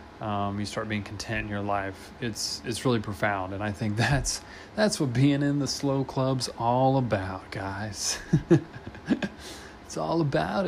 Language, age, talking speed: English, 20-39, 180 wpm